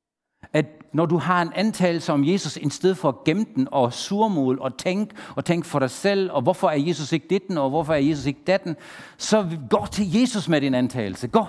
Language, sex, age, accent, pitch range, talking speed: Danish, male, 60-79, German, 125-195 Hz, 225 wpm